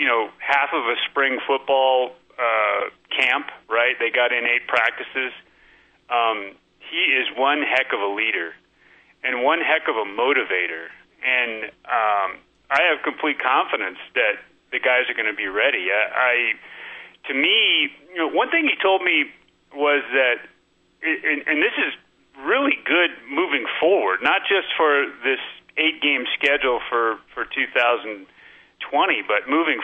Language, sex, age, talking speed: English, male, 30-49, 155 wpm